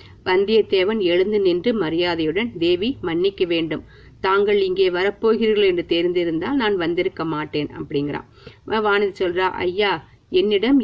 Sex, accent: female, native